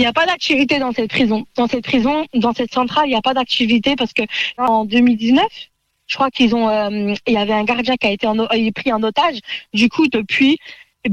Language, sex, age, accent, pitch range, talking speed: French, female, 20-39, French, 220-270 Hz, 245 wpm